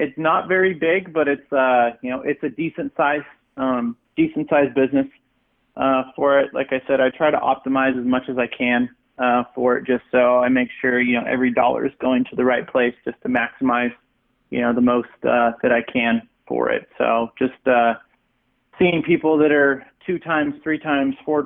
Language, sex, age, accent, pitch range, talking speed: English, male, 30-49, American, 120-150 Hz, 210 wpm